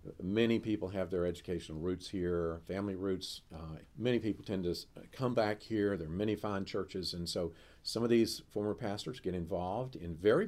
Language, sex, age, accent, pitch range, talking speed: English, male, 50-69, American, 85-115 Hz, 190 wpm